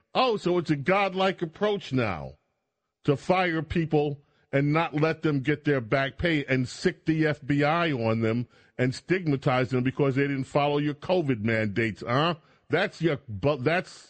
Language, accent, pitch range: English, American, 115-160 Hz